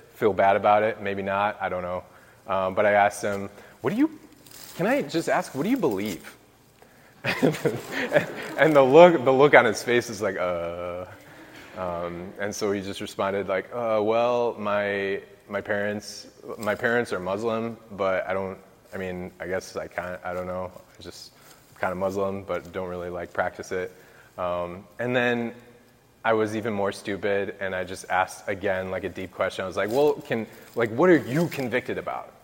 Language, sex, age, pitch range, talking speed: English, male, 20-39, 100-135 Hz, 195 wpm